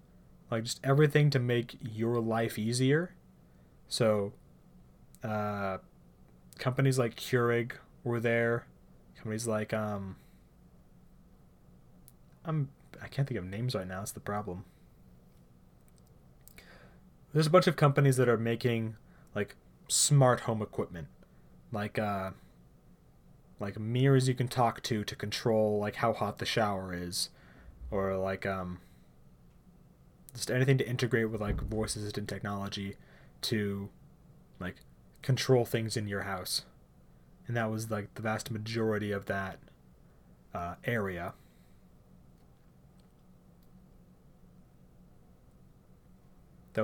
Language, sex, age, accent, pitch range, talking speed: English, male, 20-39, American, 95-125 Hz, 115 wpm